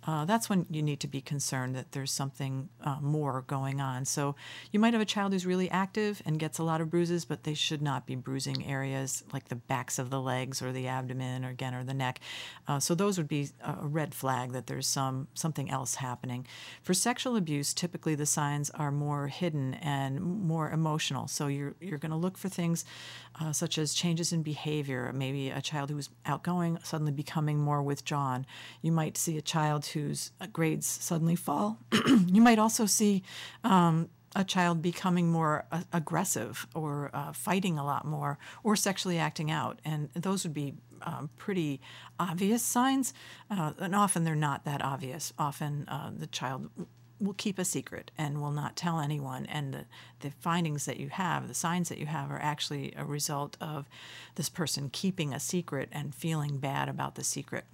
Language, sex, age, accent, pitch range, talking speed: English, female, 50-69, American, 135-170 Hz, 195 wpm